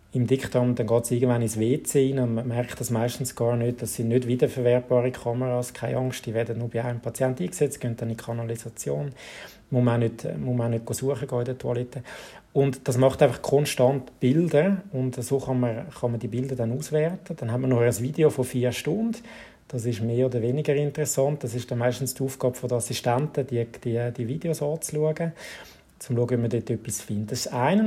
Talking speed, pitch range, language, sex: 220 wpm, 120-140 Hz, German, male